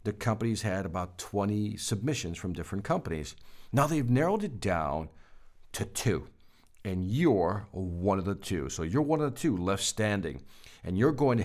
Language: English